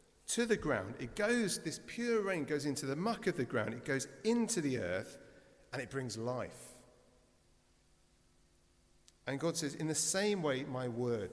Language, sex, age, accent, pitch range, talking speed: English, male, 40-59, British, 135-185 Hz, 175 wpm